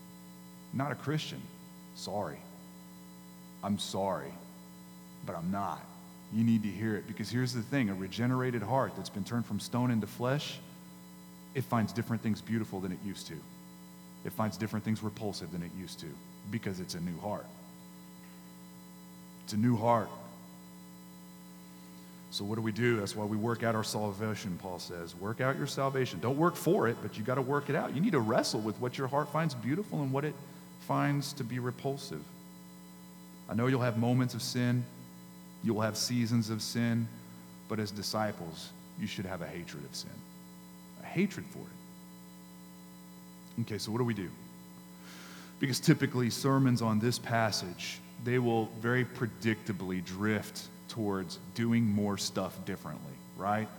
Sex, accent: male, American